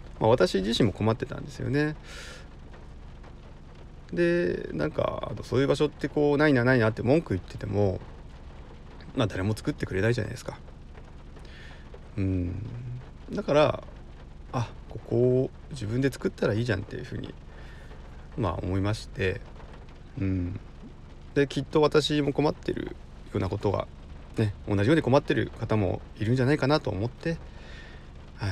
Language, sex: Japanese, male